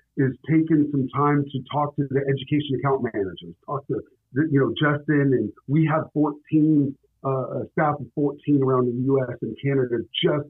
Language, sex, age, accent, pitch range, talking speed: English, male, 40-59, American, 130-155 Hz, 175 wpm